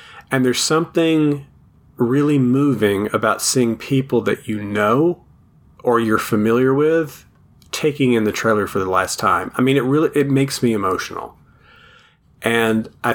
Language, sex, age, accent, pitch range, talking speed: English, male, 40-59, American, 105-135 Hz, 150 wpm